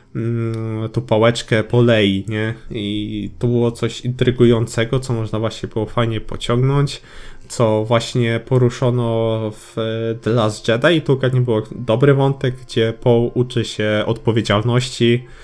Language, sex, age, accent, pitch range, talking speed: Polish, male, 20-39, native, 110-125 Hz, 120 wpm